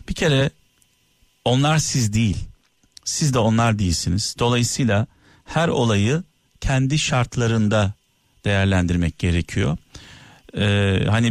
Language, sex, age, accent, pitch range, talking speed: Turkish, male, 50-69, native, 110-140 Hz, 95 wpm